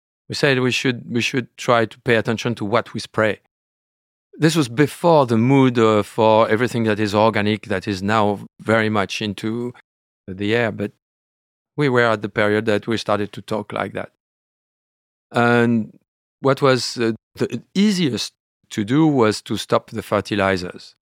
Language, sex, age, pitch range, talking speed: English, male, 40-59, 105-120 Hz, 165 wpm